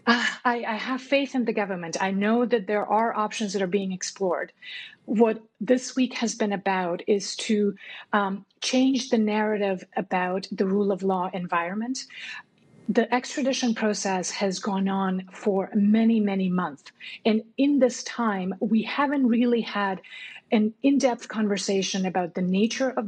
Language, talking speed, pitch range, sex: English, 160 wpm, 200-240 Hz, female